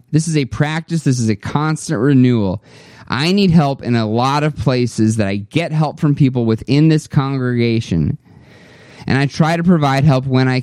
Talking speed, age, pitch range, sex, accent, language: 190 wpm, 20-39, 105-140 Hz, male, American, English